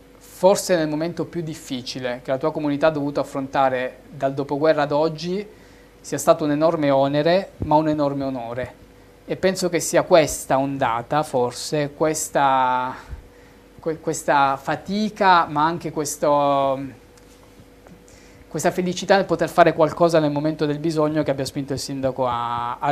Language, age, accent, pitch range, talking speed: Italian, 20-39, native, 135-160 Hz, 140 wpm